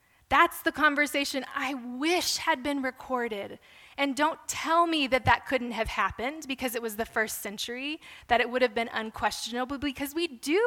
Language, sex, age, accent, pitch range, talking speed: English, female, 20-39, American, 220-280 Hz, 180 wpm